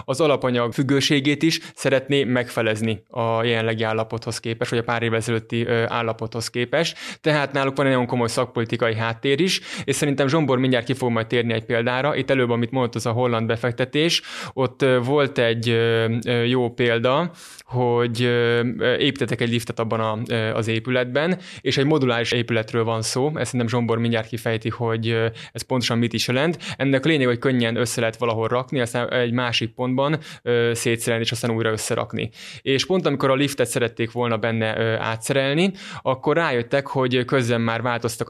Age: 20-39